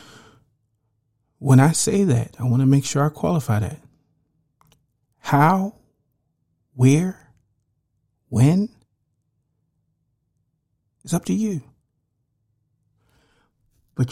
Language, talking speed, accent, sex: English, 85 wpm, American, male